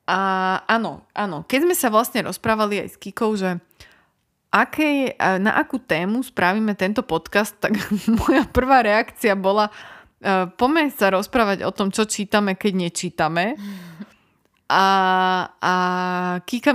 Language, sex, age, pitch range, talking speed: Slovak, female, 20-39, 185-230 Hz, 130 wpm